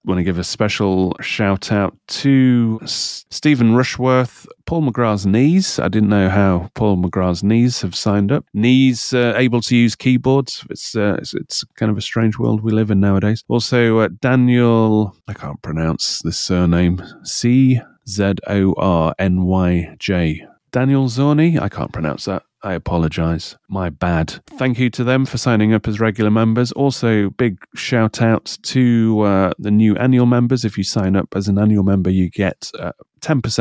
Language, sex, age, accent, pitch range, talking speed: English, male, 30-49, British, 95-120 Hz, 175 wpm